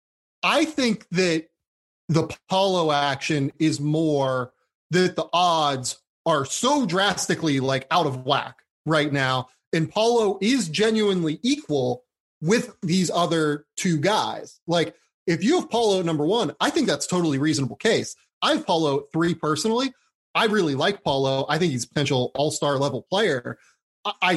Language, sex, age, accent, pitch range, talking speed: English, male, 30-49, American, 140-185 Hz, 155 wpm